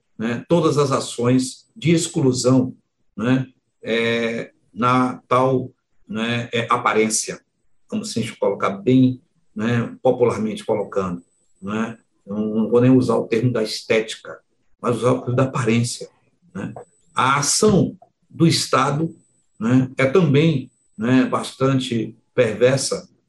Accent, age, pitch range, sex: Brazilian, 60-79, 120-145 Hz, male